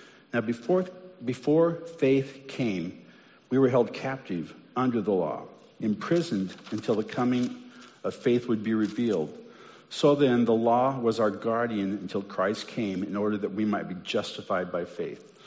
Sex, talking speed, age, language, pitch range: male, 155 wpm, 50-69, English, 105-135 Hz